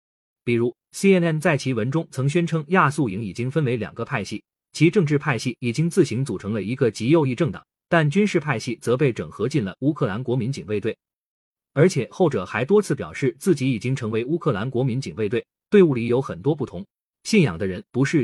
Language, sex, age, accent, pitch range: Chinese, male, 30-49, native, 125-170 Hz